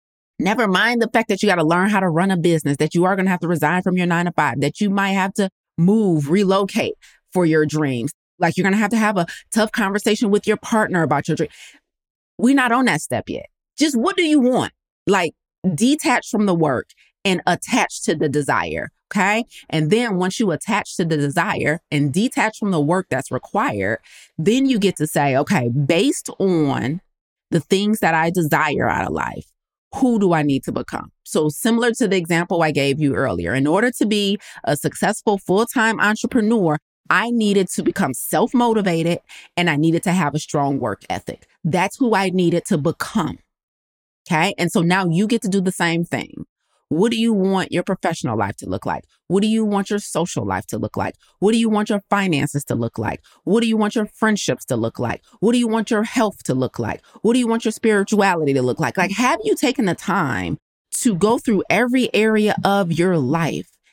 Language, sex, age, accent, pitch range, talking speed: English, female, 30-49, American, 160-220 Hz, 215 wpm